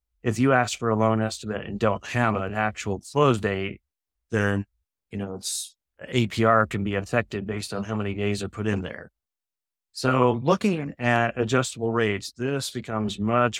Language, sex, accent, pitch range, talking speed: English, male, American, 100-125 Hz, 170 wpm